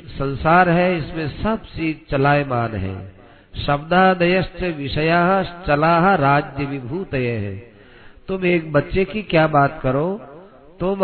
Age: 50-69